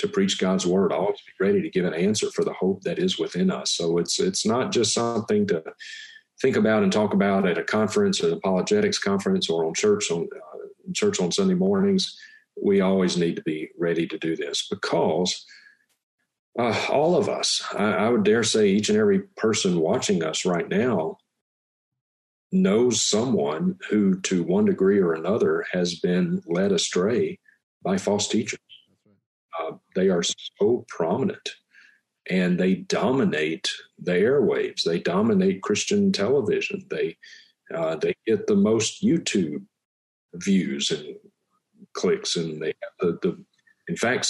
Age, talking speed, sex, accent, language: 50-69, 160 wpm, male, American, English